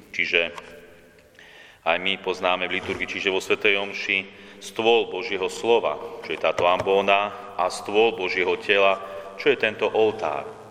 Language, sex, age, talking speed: Slovak, male, 30-49, 140 wpm